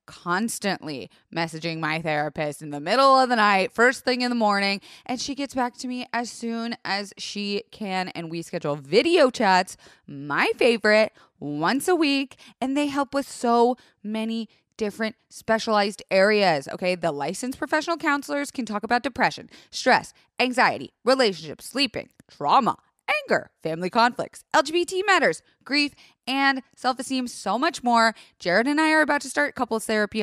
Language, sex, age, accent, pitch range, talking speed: English, female, 20-39, American, 190-280 Hz, 155 wpm